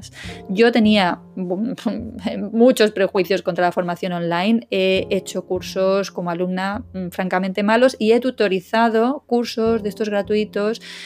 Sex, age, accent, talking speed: female, 20-39, Spanish, 120 wpm